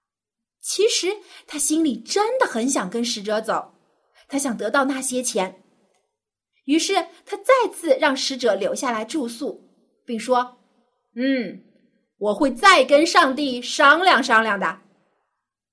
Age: 30-49